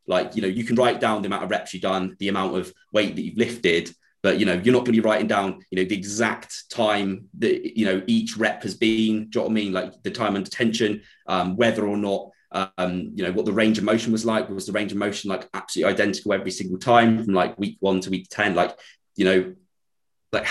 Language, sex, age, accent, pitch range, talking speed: English, male, 20-39, British, 95-115 Hz, 260 wpm